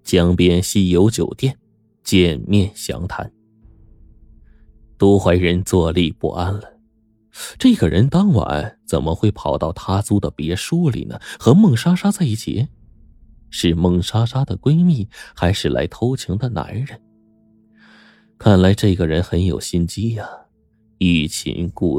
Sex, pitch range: male, 90-110 Hz